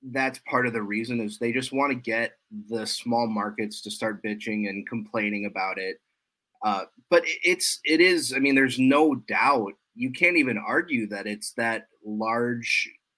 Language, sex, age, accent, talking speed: English, male, 30-49, American, 180 wpm